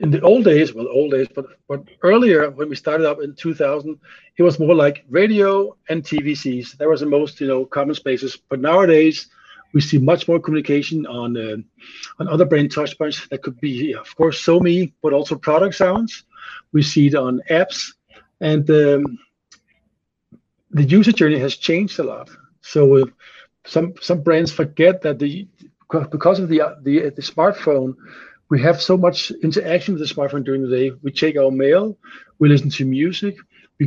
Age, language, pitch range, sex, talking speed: 50-69, English, 140-170 Hz, male, 180 wpm